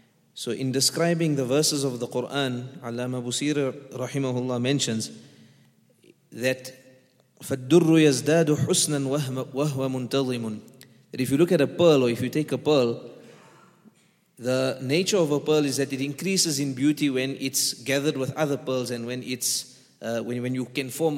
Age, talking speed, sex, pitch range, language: 30-49, 145 wpm, male, 130-155 Hz, English